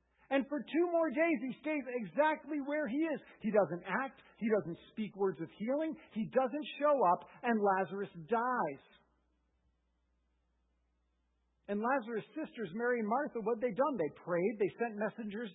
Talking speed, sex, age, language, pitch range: 160 wpm, male, 50-69, English, 170-240 Hz